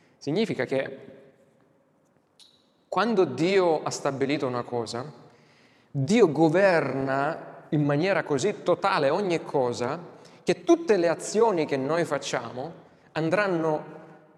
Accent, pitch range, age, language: native, 130-175 Hz, 30-49, Italian